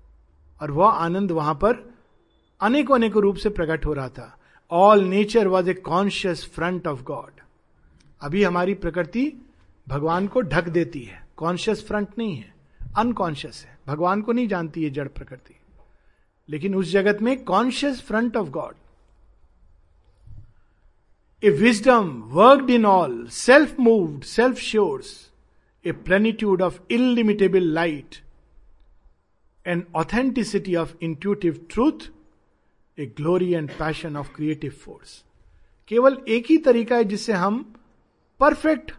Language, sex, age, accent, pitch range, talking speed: Hindi, male, 50-69, native, 160-235 Hz, 130 wpm